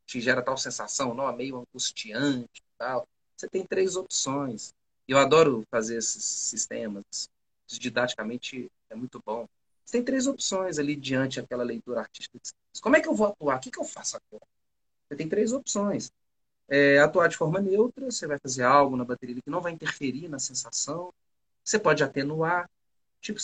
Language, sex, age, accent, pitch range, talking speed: Portuguese, male, 40-59, Brazilian, 130-185 Hz, 170 wpm